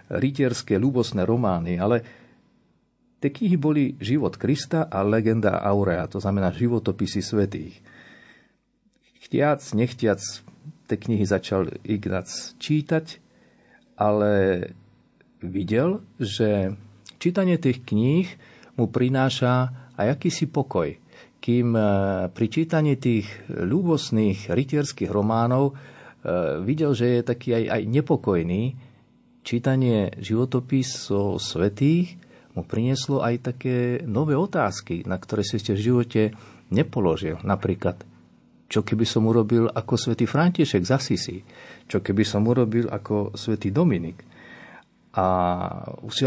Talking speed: 105 wpm